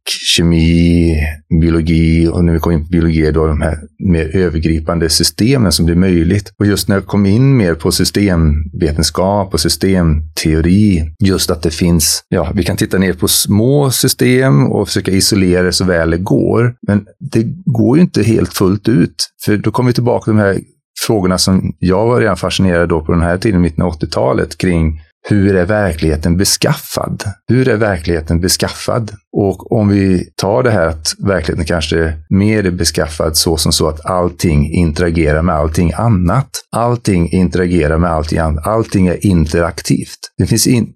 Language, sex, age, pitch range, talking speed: Swedish, male, 30-49, 85-105 Hz, 175 wpm